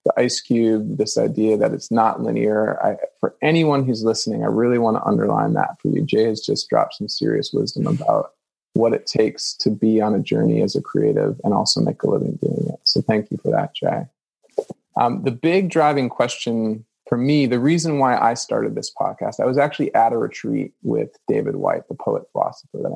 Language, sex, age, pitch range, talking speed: English, male, 20-39, 115-150 Hz, 210 wpm